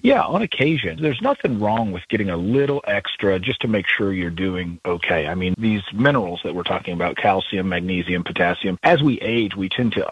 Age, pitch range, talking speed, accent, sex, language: 40-59, 85-105 Hz, 210 wpm, American, male, English